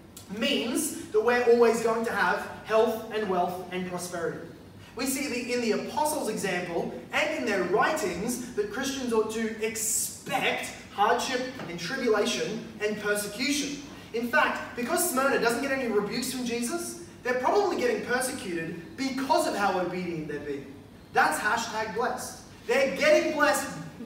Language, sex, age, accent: English, male, 20-39, Australian